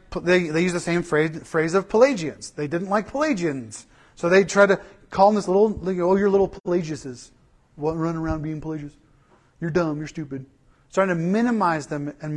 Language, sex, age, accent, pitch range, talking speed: English, male, 40-59, American, 135-210 Hz, 195 wpm